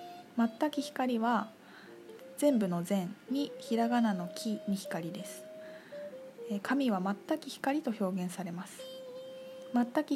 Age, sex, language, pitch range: 20-39, female, Japanese, 210-285 Hz